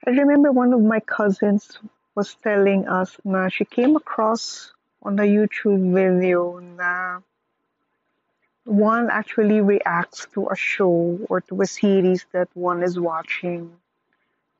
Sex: female